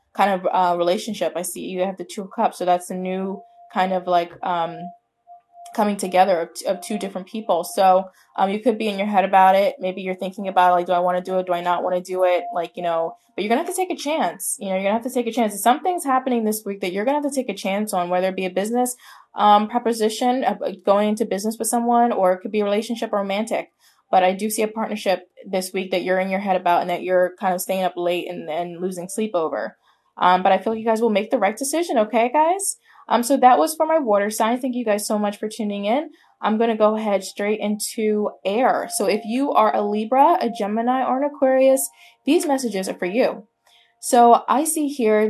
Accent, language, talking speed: American, English, 260 wpm